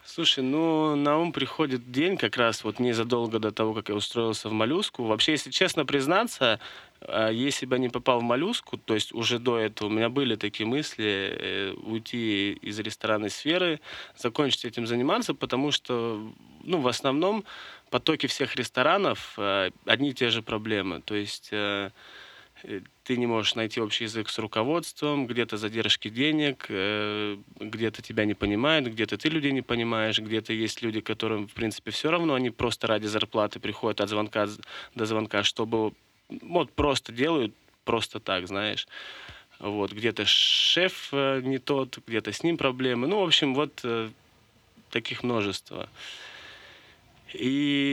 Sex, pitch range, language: male, 110-135 Hz, Russian